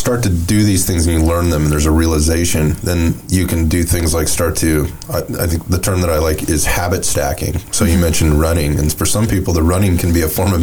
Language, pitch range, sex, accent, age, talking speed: English, 80-95 Hz, male, American, 30-49, 265 wpm